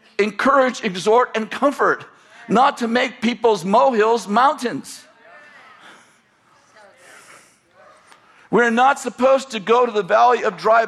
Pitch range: 210-265 Hz